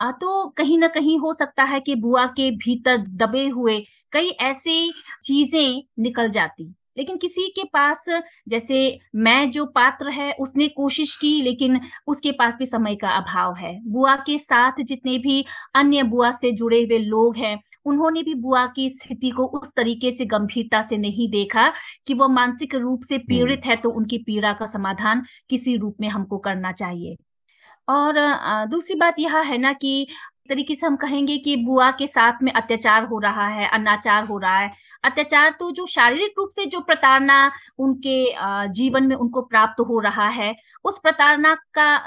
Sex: female